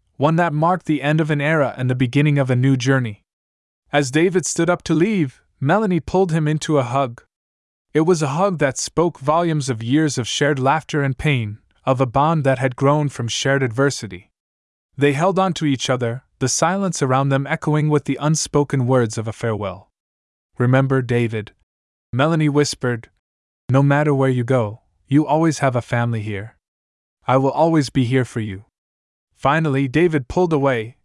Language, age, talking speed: English, 20-39, 180 wpm